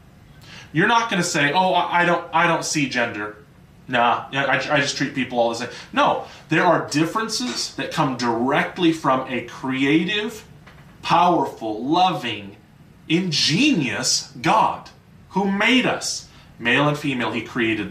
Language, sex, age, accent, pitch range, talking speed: English, male, 30-49, American, 125-165 Hz, 140 wpm